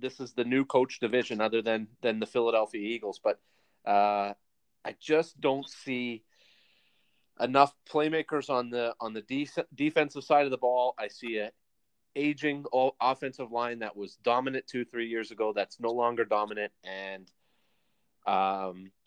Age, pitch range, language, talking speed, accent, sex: 30-49, 115-140 Hz, English, 155 wpm, American, male